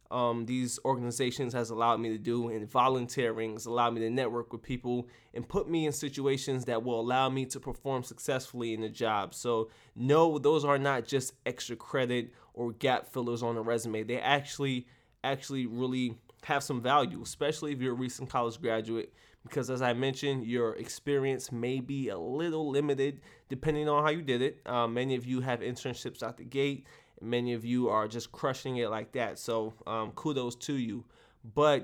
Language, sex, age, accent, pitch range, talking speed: English, male, 20-39, American, 120-135 Hz, 190 wpm